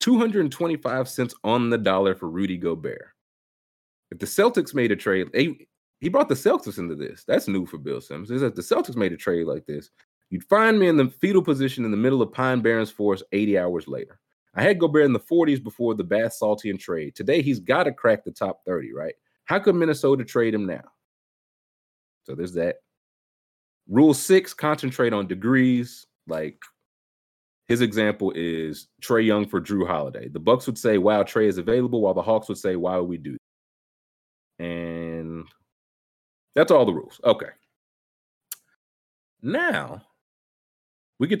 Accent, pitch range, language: American, 90-135 Hz, English